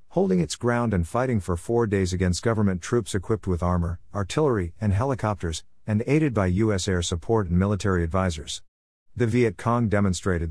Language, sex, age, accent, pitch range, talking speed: English, male, 50-69, American, 90-115 Hz, 170 wpm